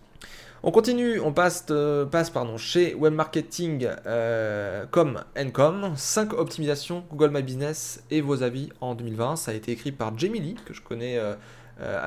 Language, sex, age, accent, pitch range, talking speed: French, male, 20-39, French, 115-150 Hz, 155 wpm